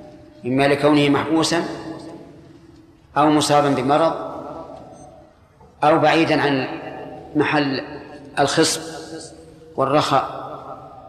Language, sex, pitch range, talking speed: Arabic, male, 140-170 Hz, 65 wpm